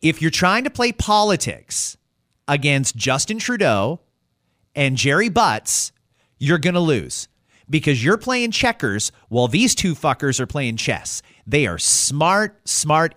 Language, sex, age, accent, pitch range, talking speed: English, male, 30-49, American, 140-215 Hz, 140 wpm